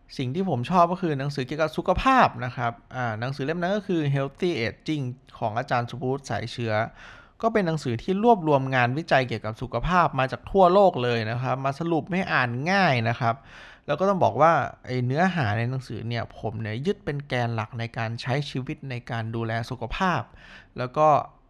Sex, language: male, Thai